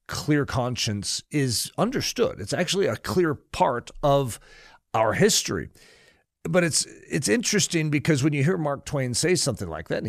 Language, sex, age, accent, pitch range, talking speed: English, male, 40-59, American, 110-170 Hz, 160 wpm